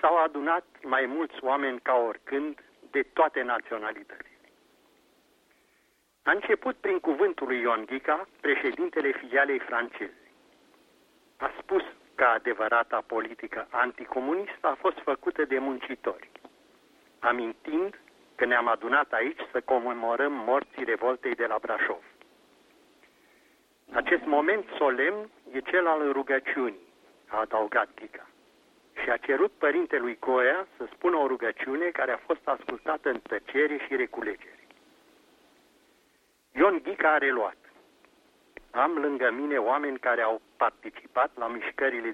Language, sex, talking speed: Romanian, male, 115 wpm